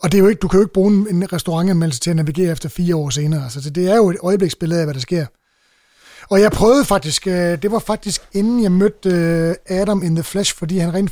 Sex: male